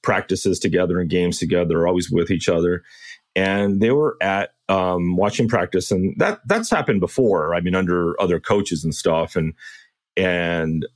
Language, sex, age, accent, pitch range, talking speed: English, male, 30-49, American, 85-105 Hz, 165 wpm